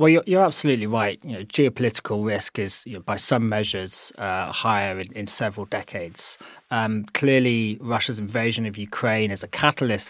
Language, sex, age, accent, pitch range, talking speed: English, male, 30-49, British, 105-125 Hz, 165 wpm